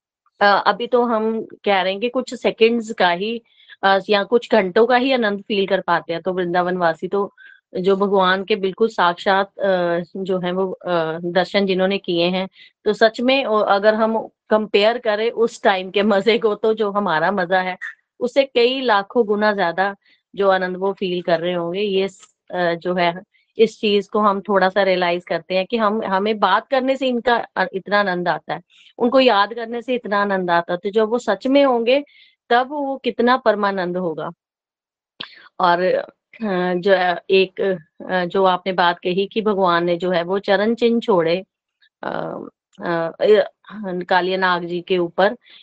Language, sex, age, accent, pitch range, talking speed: Hindi, female, 20-39, native, 185-225 Hz, 170 wpm